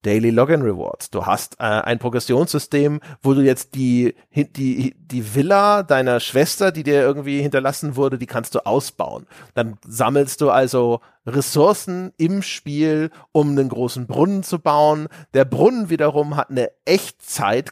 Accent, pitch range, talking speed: German, 130-175 Hz, 150 wpm